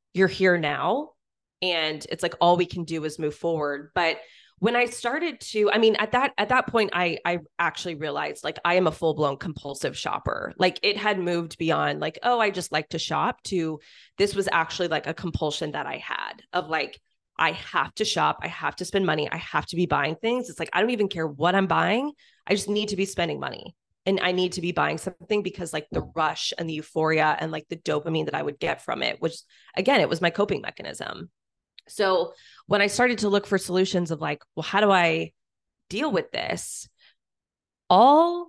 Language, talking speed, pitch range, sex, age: English, 220 wpm, 160-210 Hz, female, 20-39